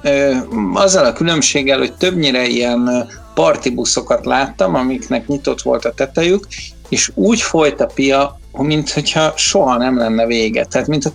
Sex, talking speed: male, 135 wpm